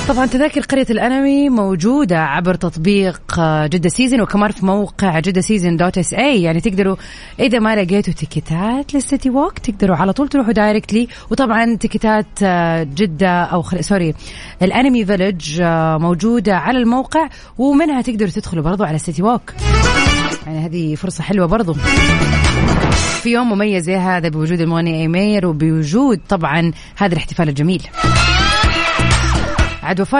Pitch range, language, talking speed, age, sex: 170-220 Hz, Arabic, 130 wpm, 30-49, female